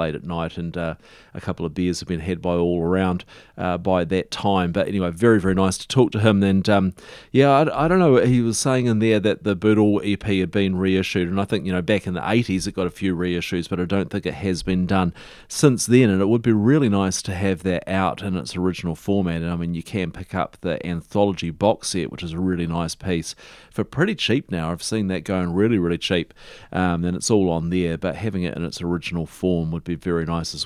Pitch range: 85-105 Hz